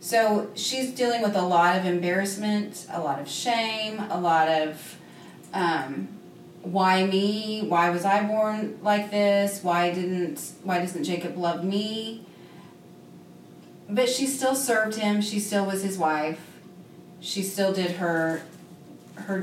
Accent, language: American, English